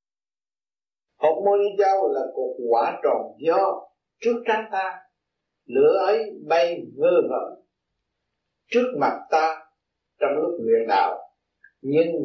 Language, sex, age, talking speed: Vietnamese, male, 50-69, 115 wpm